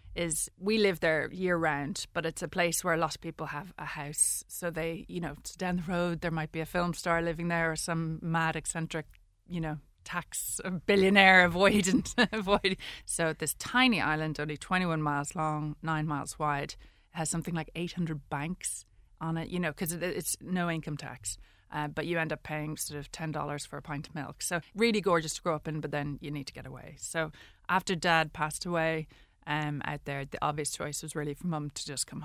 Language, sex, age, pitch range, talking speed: English, female, 30-49, 155-180 Hz, 210 wpm